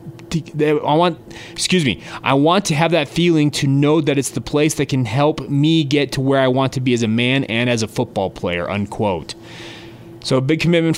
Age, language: 30-49, English